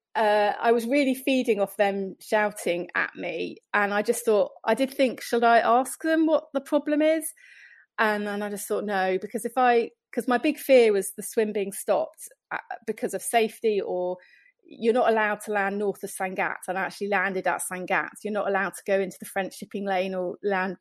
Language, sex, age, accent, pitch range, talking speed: English, female, 30-49, British, 195-235 Hz, 210 wpm